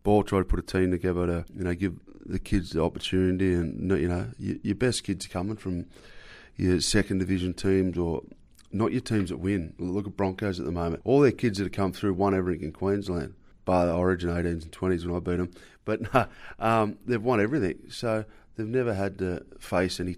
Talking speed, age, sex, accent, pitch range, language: 220 wpm, 30-49, male, Australian, 85-100 Hz, English